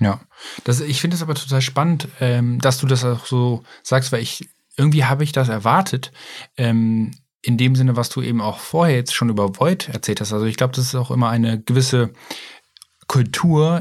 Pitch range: 110-135 Hz